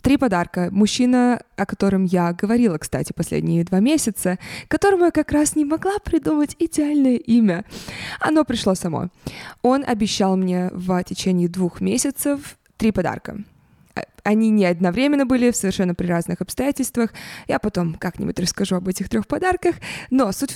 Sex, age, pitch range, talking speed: female, 20-39, 185-250 Hz, 150 wpm